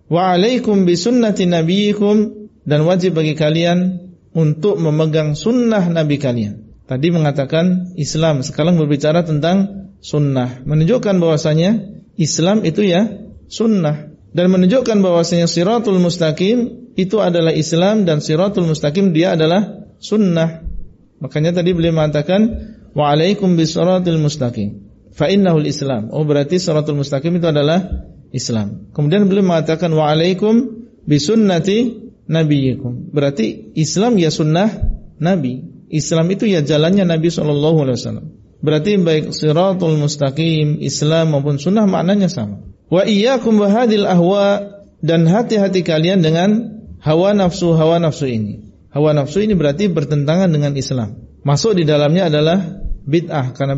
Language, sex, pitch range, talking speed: Indonesian, male, 150-190 Hz, 120 wpm